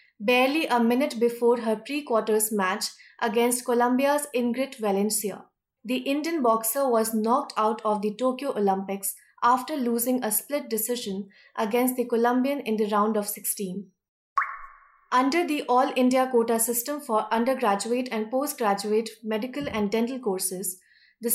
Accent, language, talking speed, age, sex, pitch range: Indian, English, 140 wpm, 20-39, female, 215-255 Hz